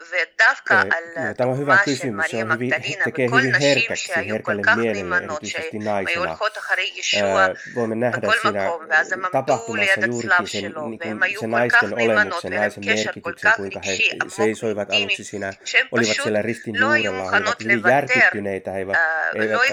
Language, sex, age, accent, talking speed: Finnish, male, 30-49, native, 130 wpm